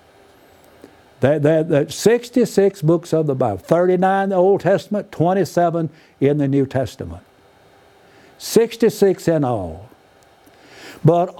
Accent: American